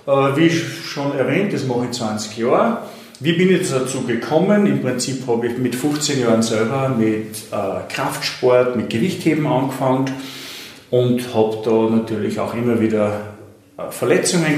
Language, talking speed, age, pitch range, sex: German, 140 wpm, 40-59, 110-130 Hz, male